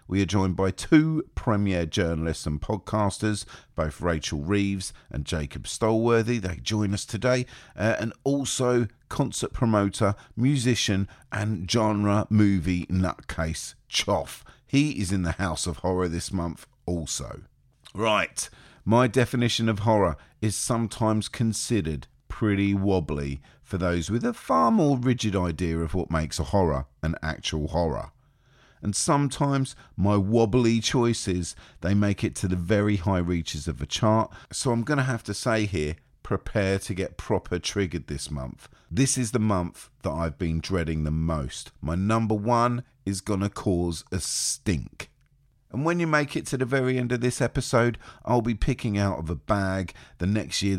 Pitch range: 85-120 Hz